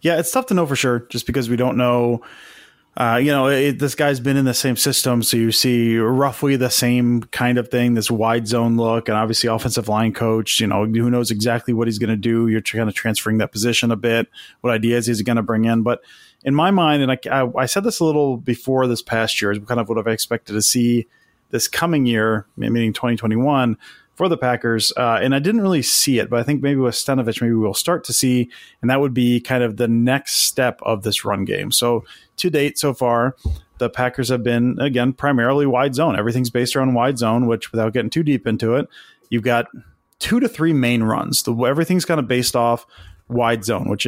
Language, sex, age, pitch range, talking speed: English, male, 30-49, 115-135 Hz, 230 wpm